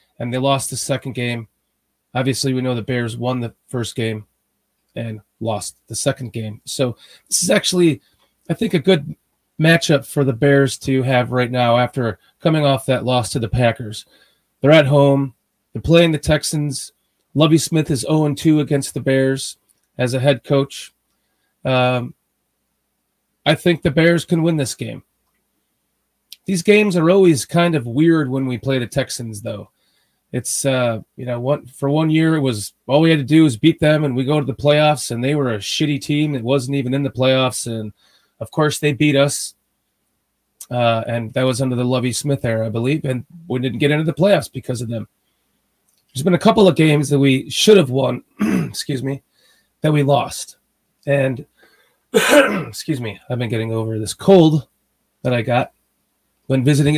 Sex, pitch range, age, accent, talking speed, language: male, 125-150 Hz, 30-49, American, 185 wpm, English